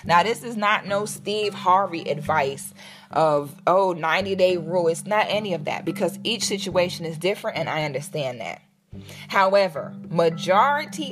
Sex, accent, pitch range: female, American, 175-235 Hz